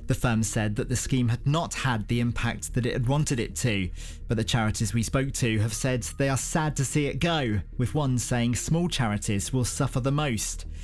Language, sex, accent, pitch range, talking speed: English, male, British, 115-155 Hz, 225 wpm